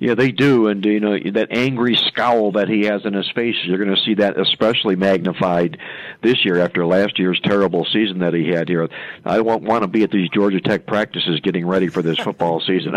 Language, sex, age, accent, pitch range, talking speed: English, male, 50-69, American, 95-115 Hz, 225 wpm